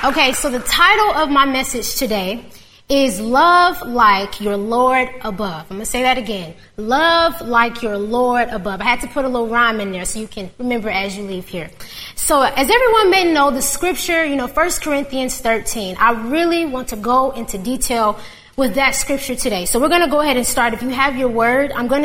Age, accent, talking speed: 20-39, American, 220 wpm